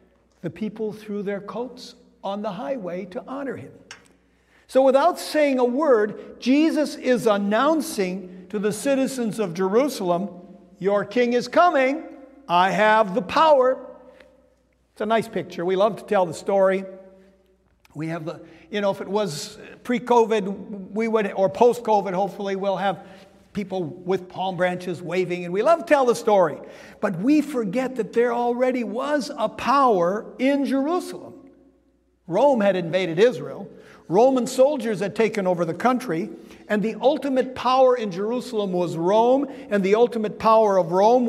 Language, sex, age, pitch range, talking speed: English, male, 60-79, 195-260 Hz, 155 wpm